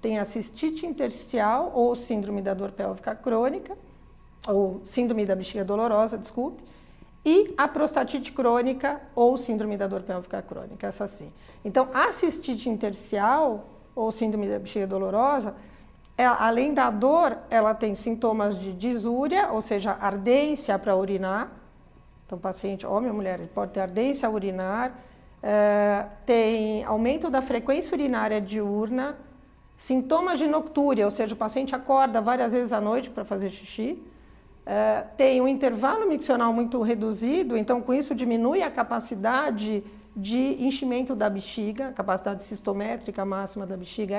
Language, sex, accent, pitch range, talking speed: Portuguese, female, Brazilian, 205-265 Hz, 145 wpm